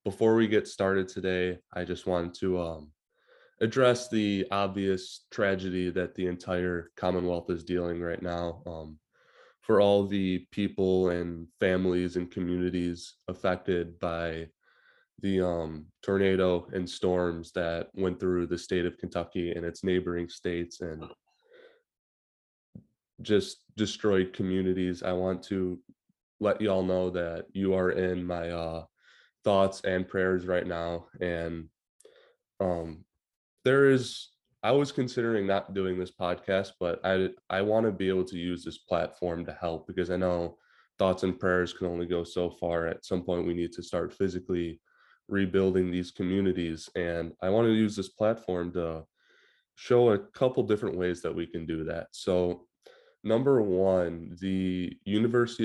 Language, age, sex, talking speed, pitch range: English, 20-39, male, 150 wpm, 85-95 Hz